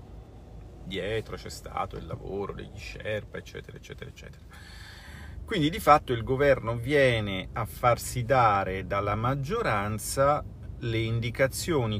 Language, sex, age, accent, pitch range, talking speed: Italian, male, 40-59, native, 95-120 Hz, 115 wpm